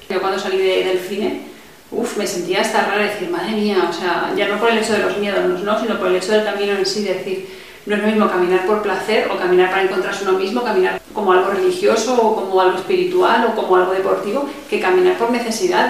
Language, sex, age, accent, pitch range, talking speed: Spanish, female, 40-59, Spanish, 185-220 Hz, 240 wpm